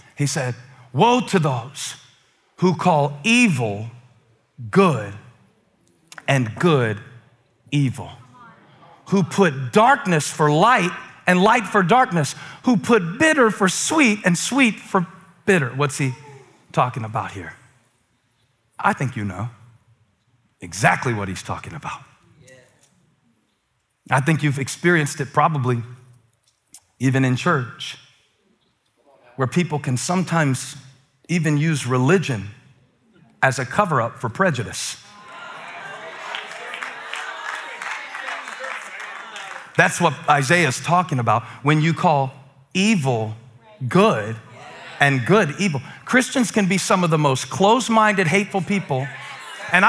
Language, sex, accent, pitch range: English, male, American, 125-185 Hz